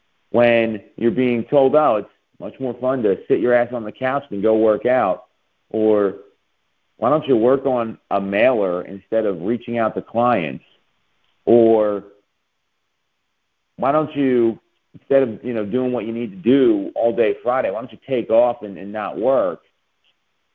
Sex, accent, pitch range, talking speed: male, American, 110-135 Hz, 175 wpm